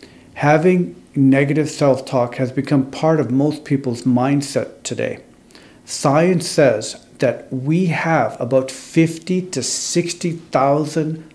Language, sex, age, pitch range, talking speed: English, male, 50-69, 125-150 Hz, 105 wpm